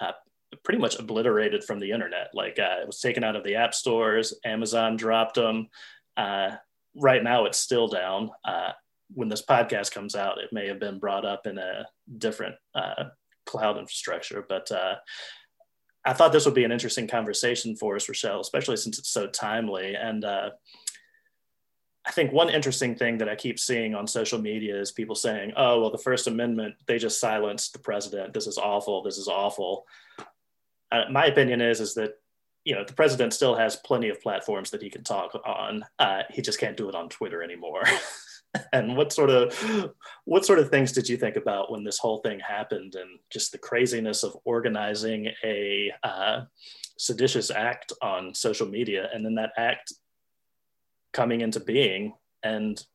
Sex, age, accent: male, 30-49, American